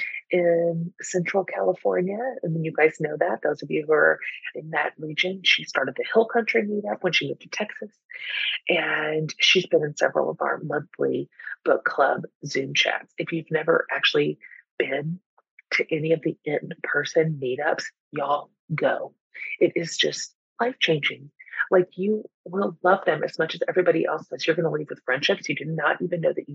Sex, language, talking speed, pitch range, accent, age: female, English, 180 wpm, 160-205 Hz, American, 30-49